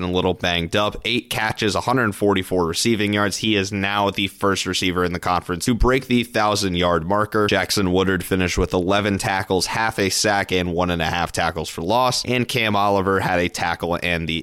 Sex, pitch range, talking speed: male, 90-110 Hz, 205 wpm